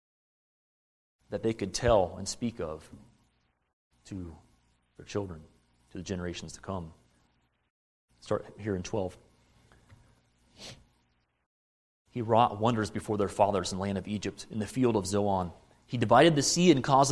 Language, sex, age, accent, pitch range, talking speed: English, male, 30-49, American, 85-130 Hz, 145 wpm